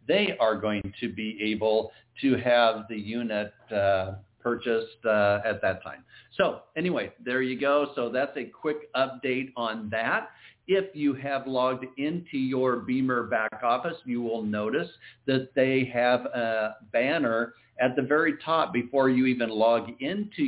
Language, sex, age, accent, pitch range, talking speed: English, male, 50-69, American, 115-135 Hz, 155 wpm